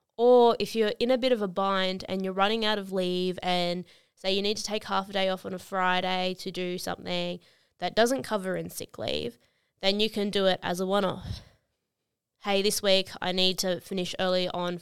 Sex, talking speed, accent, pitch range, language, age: female, 220 wpm, Australian, 185-225 Hz, English, 20-39